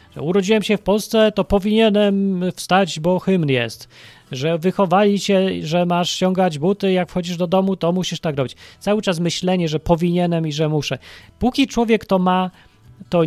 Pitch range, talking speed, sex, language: 155-200 Hz, 175 wpm, male, Polish